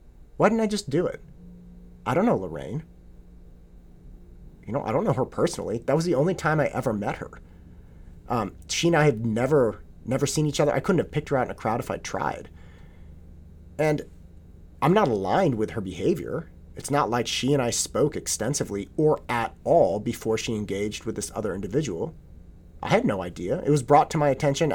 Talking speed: 200 wpm